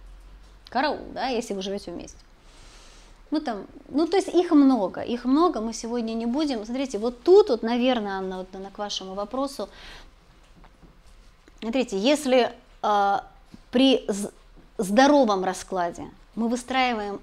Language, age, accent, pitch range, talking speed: Russian, 20-39, native, 200-245 Hz, 130 wpm